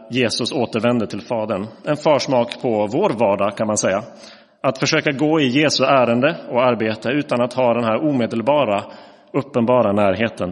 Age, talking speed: 30-49, 160 wpm